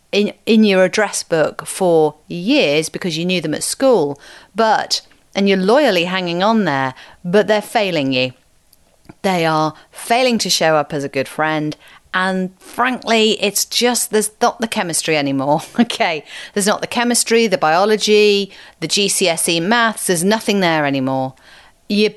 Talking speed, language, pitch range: 155 wpm, English, 155-225 Hz